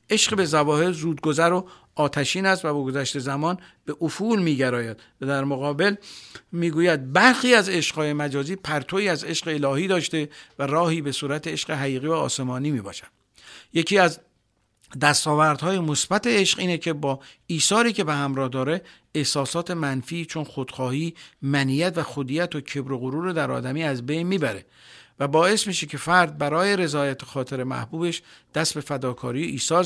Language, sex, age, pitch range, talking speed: Persian, male, 50-69, 140-175 Hz, 165 wpm